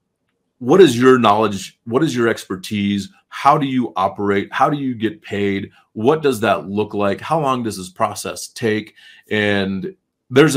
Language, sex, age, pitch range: English, male, 30-49, 100-115 Hz